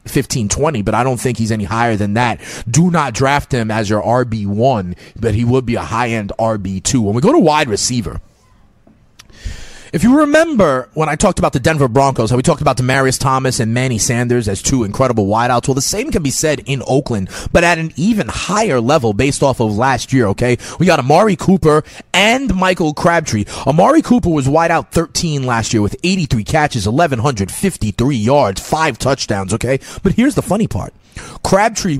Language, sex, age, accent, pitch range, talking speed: English, male, 30-49, American, 115-160 Hz, 190 wpm